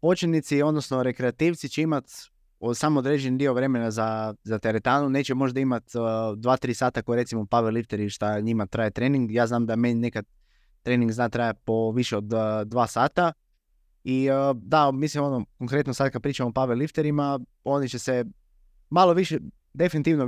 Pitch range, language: 115-145 Hz, Croatian